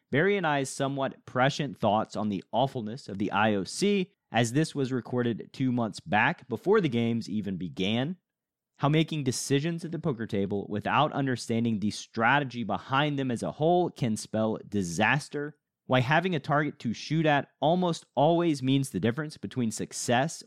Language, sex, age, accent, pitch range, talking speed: English, male, 30-49, American, 115-160 Hz, 165 wpm